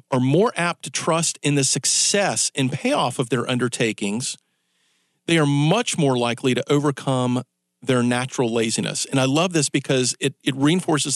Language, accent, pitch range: English, American, 130-170 Hz